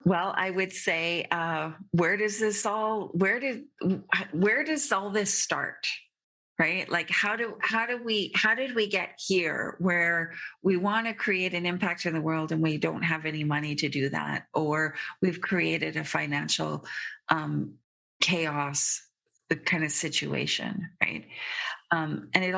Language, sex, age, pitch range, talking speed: English, female, 40-59, 155-185 Hz, 165 wpm